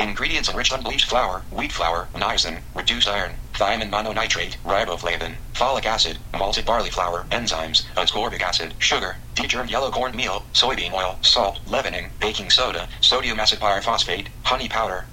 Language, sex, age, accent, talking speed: English, male, 30-49, American, 145 wpm